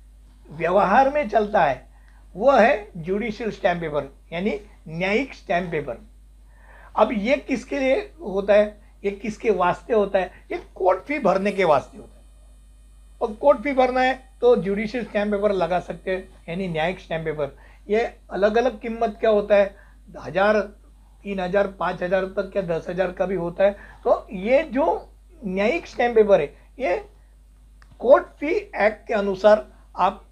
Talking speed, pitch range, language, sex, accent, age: 155 wpm, 175-225 Hz, Hindi, male, native, 60-79